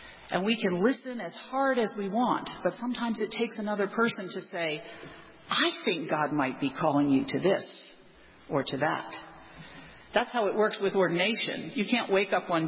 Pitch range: 195-265 Hz